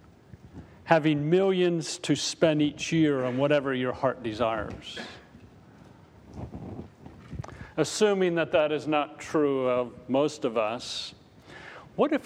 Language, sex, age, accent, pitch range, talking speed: English, male, 40-59, American, 130-170 Hz, 115 wpm